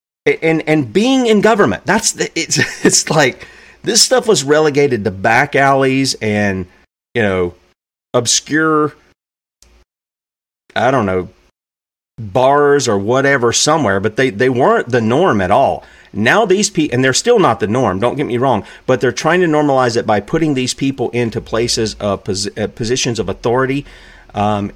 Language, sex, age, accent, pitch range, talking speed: English, male, 40-59, American, 110-155 Hz, 160 wpm